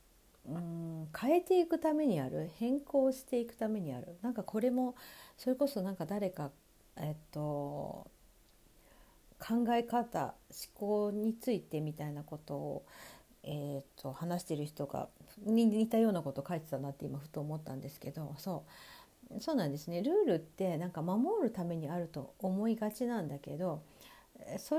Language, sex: Japanese, female